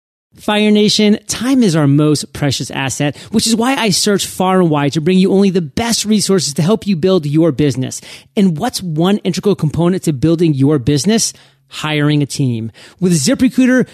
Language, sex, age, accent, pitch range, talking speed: English, male, 40-59, American, 150-200 Hz, 185 wpm